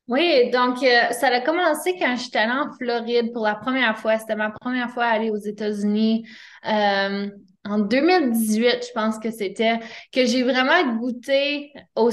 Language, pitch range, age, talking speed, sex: French, 215-260 Hz, 20-39, 175 wpm, female